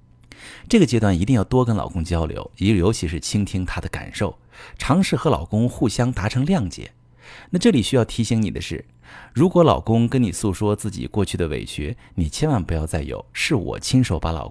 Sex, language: male, Chinese